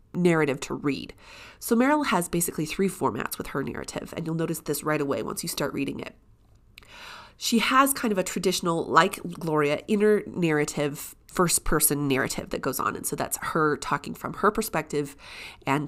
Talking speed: 180 wpm